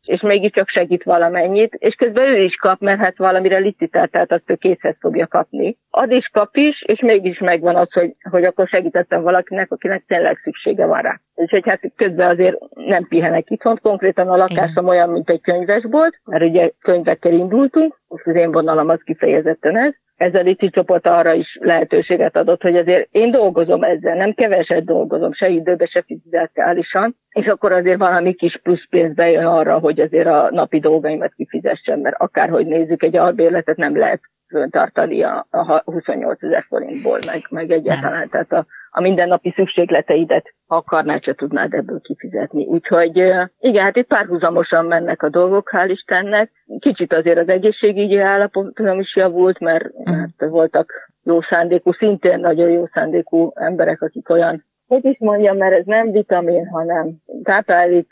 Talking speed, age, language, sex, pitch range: 165 wpm, 50-69, Hungarian, female, 170-195 Hz